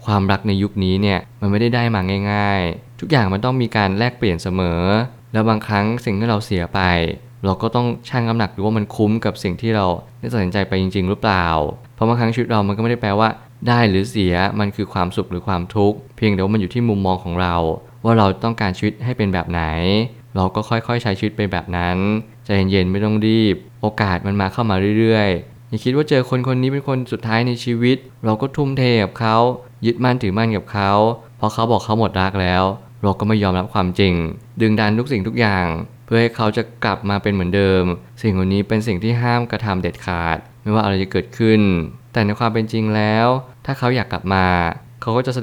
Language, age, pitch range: Thai, 20-39, 95-115 Hz